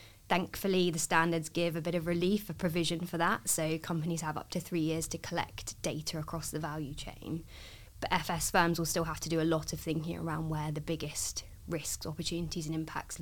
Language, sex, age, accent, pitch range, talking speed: English, female, 20-39, British, 150-175 Hz, 210 wpm